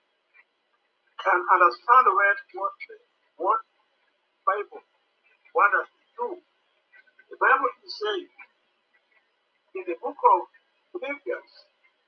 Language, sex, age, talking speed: English, male, 50-69, 95 wpm